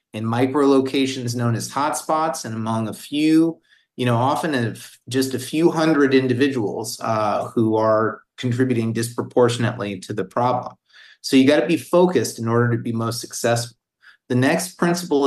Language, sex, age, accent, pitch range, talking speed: English, male, 30-49, American, 115-145 Hz, 165 wpm